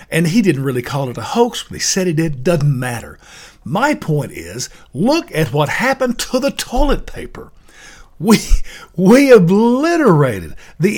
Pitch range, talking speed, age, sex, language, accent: 130-205 Hz, 165 wpm, 50-69, male, English, American